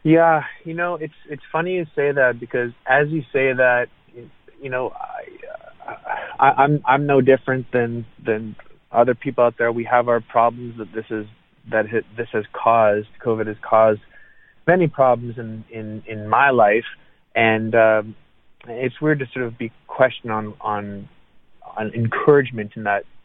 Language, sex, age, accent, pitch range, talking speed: English, male, 30-49, American, 110-130 Hz, 165 wpm